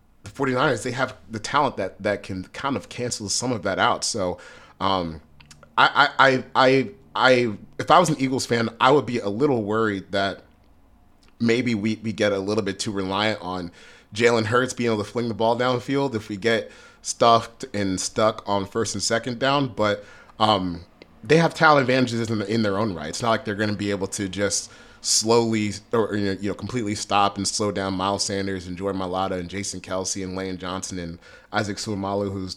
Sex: male